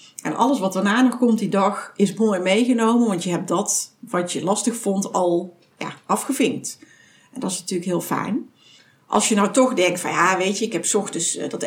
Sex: female